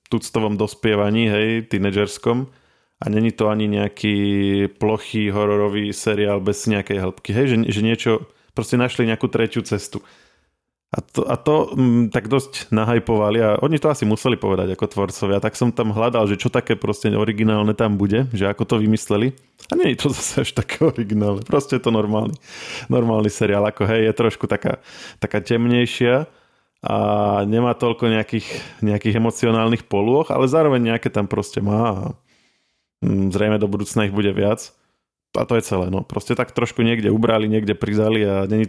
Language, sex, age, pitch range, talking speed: Slovak, male, 20-39, 100-115 Hz, 170 wpm